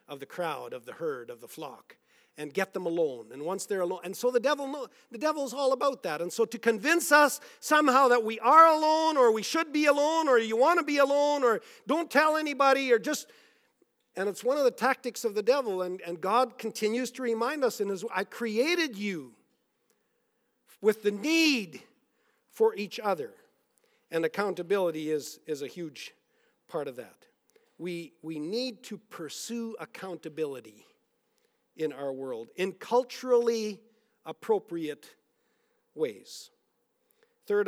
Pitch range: 185-285 Hz